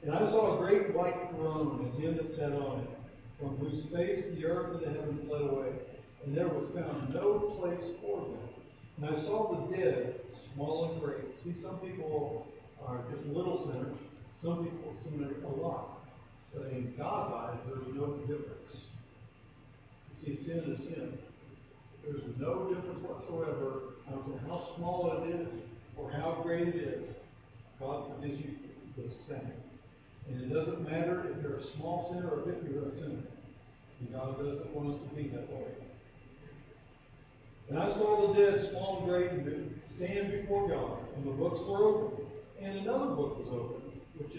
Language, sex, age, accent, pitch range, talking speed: English, male, 50-69, American, 130-165 Hz, 170 wpm